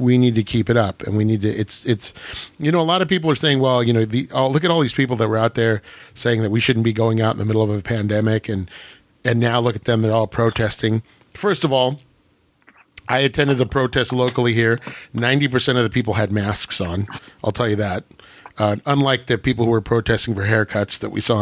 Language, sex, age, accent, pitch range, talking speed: English, male, 40-59, American, 110-130 Hz, 245 wpm